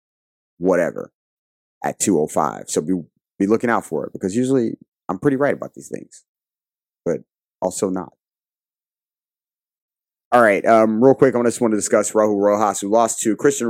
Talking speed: 160 wpm